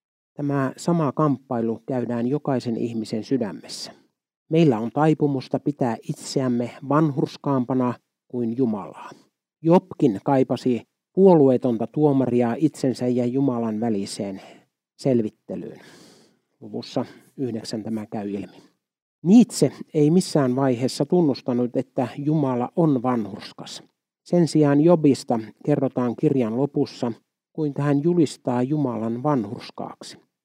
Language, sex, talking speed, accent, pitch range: Finnish, male, 95 wpm, native, 120-150 Hz